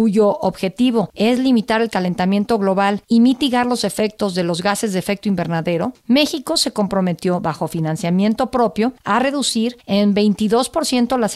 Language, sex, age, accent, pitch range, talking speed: Spanish, female, 50-69, Mexican, 190-235 Hz, 150 wpm